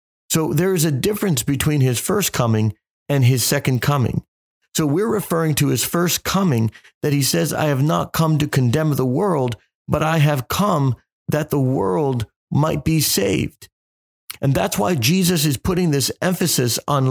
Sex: male